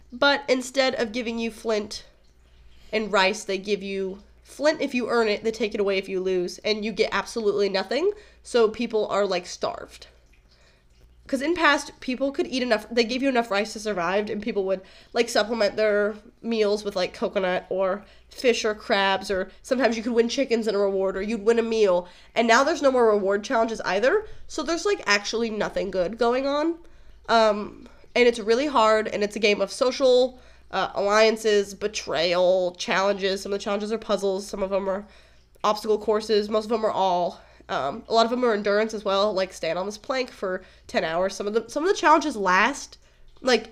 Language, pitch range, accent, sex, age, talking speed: English, 195-235 Hz, American, female, 20-39, 205 wpm